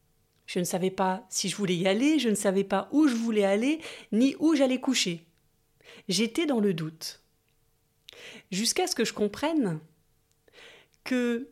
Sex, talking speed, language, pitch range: female, 160 wpm, French, 195-275 Hz